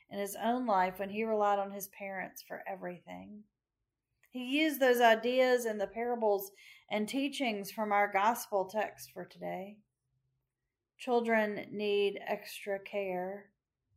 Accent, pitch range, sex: American, 190-240 Hz, female